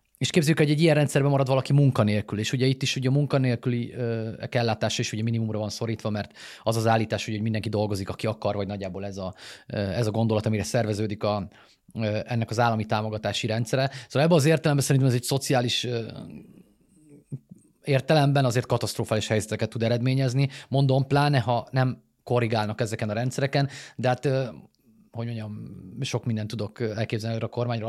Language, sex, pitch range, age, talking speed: Hungarian, male, 110-130 Hz, 30-49, 180 wpm